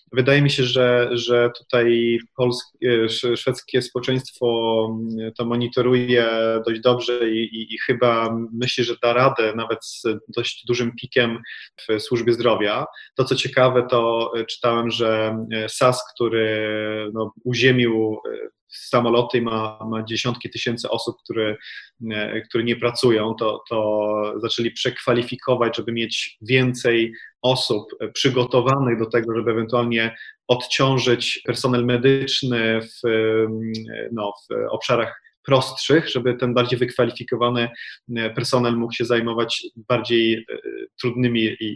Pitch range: 115-125 Hz